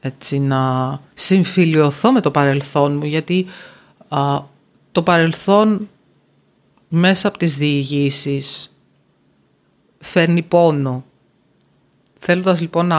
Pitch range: 140-170 Hz